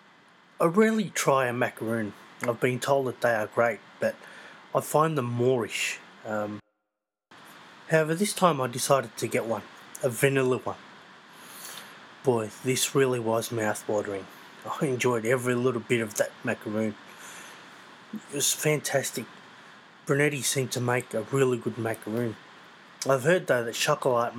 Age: 30-49